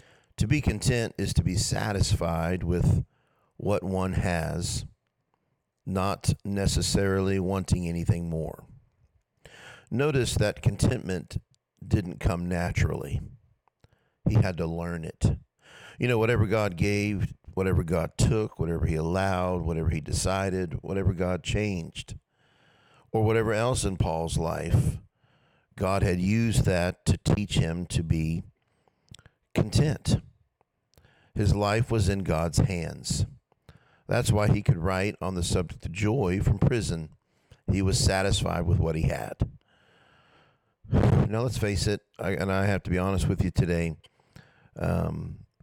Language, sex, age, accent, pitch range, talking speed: English, male, 50-69, American, 85-110 Hz, 130 wpm